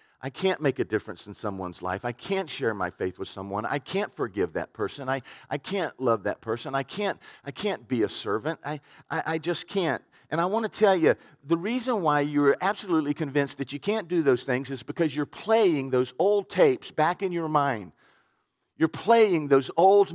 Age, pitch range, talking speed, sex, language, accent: 50-69, 150-220 Hz, 210 wpm, male, English, American